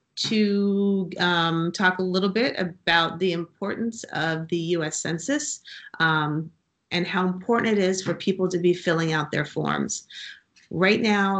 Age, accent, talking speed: 30-49, American, 155 wpm